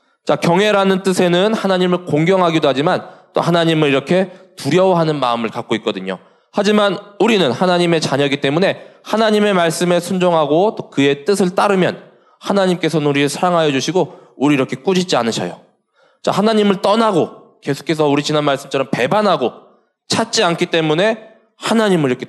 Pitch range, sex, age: 140-195 Hz, male, 20-39